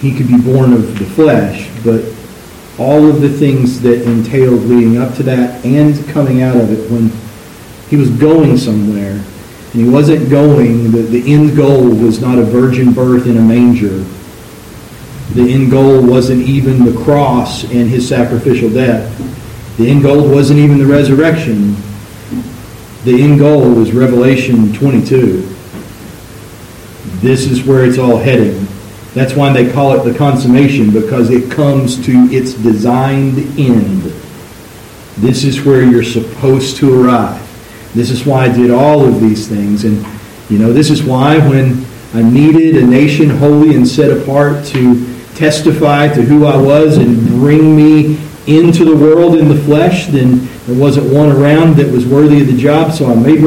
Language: English